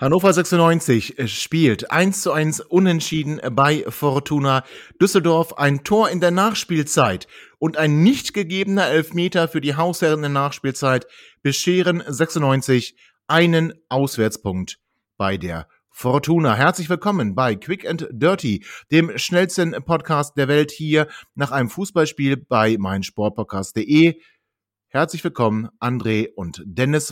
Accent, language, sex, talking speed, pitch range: German, German, male, 120 wpm, 115-160 Hz